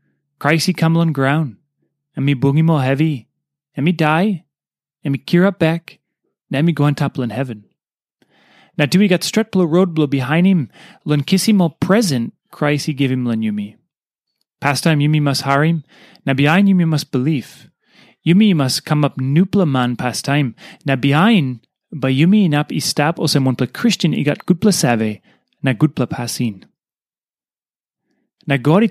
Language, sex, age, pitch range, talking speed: English, male, 30-49, 135-180 Hz, 180 wpm